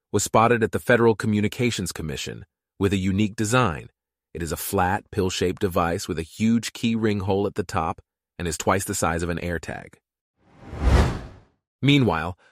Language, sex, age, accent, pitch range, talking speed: English, male, 30-49, American, 90-120 Hz, 170 wpm